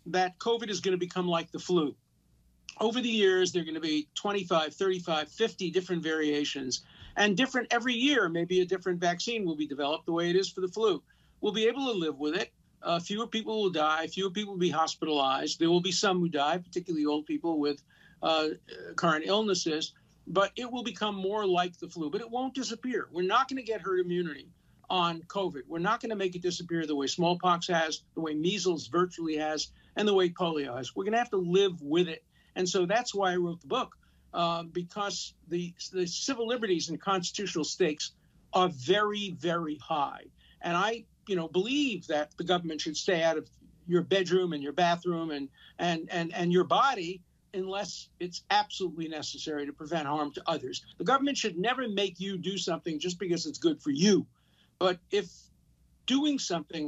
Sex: male